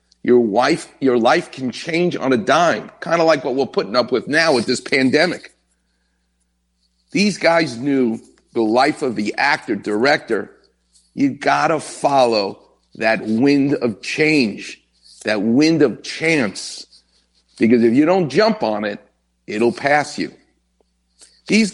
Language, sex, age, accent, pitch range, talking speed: English, male, 50-69, American, 110-160 Hz, 145 wpm